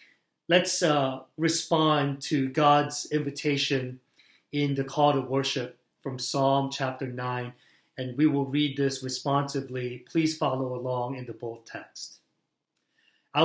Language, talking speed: English, 130 wpm